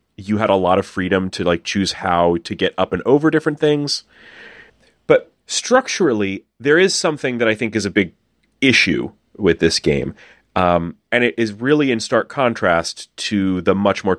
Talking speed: 185 wpm